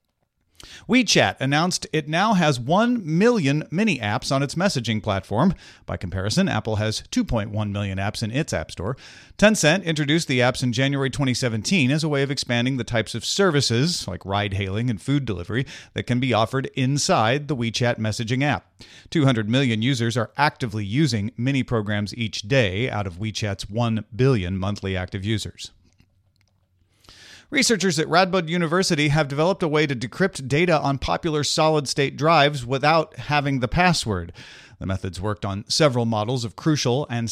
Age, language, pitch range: 40-59, English, 105-145 Hz